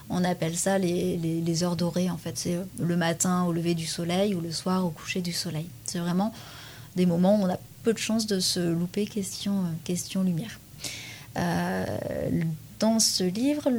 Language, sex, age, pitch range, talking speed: French, female, 30-49, 165-190 Hz, 190 wpm